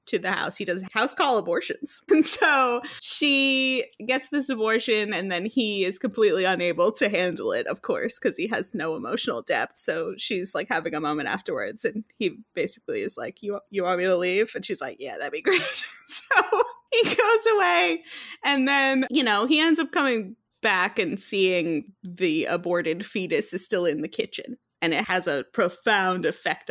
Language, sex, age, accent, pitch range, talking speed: English, female, 20-39, American, 190-285 Hz, 190 wpm